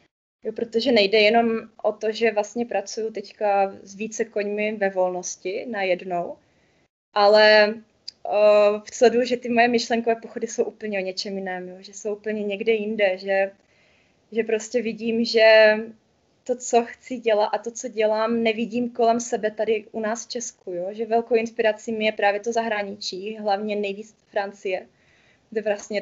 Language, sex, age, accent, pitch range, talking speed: Czech, female, 20-39, native, 205-230 Hz, 160 wpm